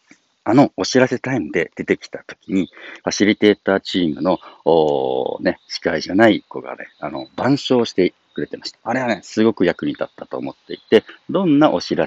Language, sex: Japanese, male